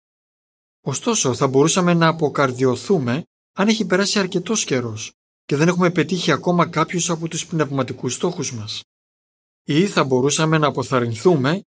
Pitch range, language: 125-170 Hz, Greek